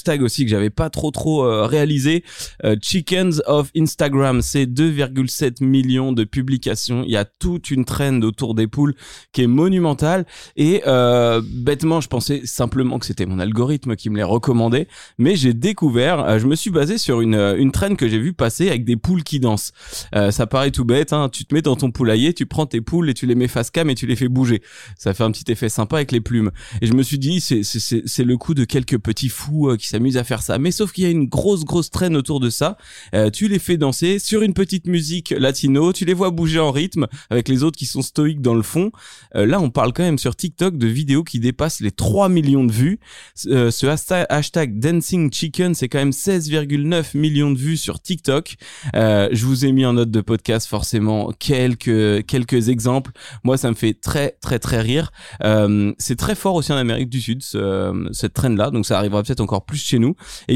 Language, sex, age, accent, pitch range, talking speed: French, male, 20-39, French, 115-155 Hz, 230 wpm